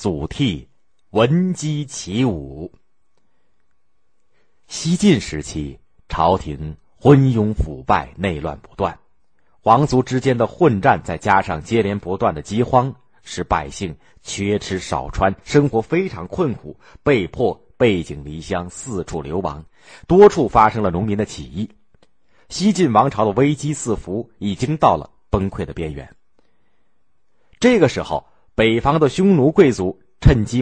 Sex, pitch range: male, 90-130 Hz